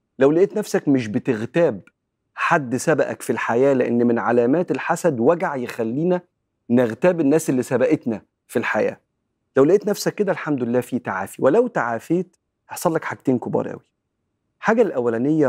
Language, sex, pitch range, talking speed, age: Arabic, male, 120-165 Hz, 145 wpm, 40-59